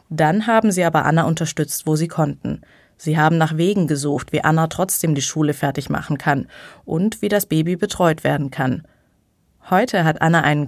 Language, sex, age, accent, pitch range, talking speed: German, female, 20-39, German, 150-190 Hz, 185 wpm